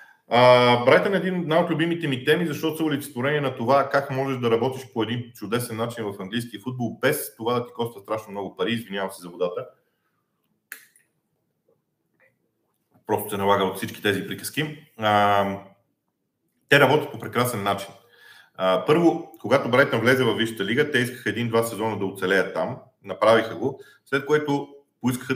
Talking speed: 165 wpm